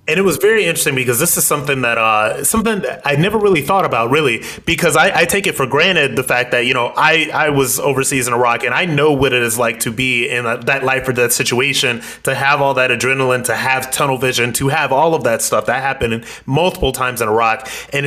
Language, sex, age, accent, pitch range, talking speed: English, male, 30-49, American, 125-155 Hz, 250 wpm